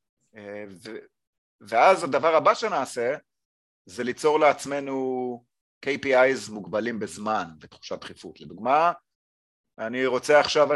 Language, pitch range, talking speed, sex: Hebrew, 110-150 Hz, 95 wpm, male